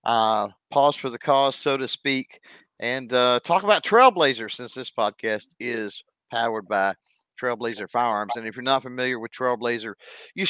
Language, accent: English, American